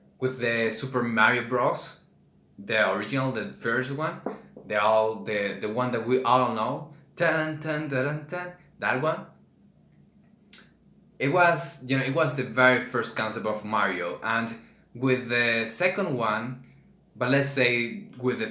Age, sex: 20-39, male